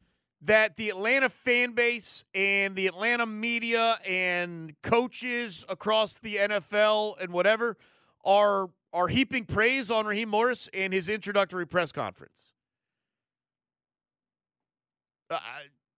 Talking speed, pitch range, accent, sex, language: 110 wpm, 200-260 Hz, American, male, English